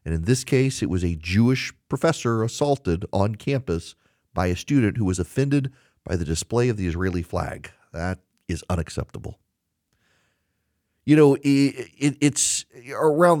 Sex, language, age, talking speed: male, English, 40-59, 145 wpm